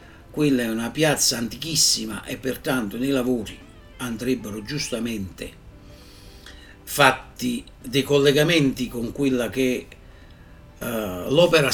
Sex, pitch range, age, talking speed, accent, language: male, 100-130 Hz, 60-79, 95 wpm, native, Italian